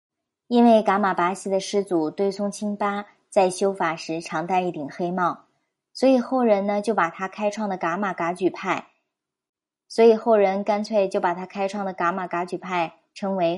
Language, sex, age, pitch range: Chinese, male, 20-39, 180-220 Hz